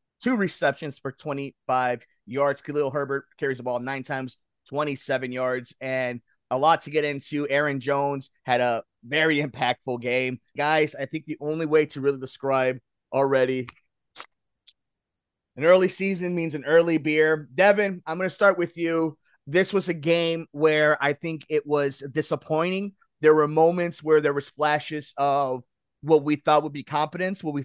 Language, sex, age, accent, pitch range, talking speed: English, male, 30-49, American, 140-170 Hz, 165 wpm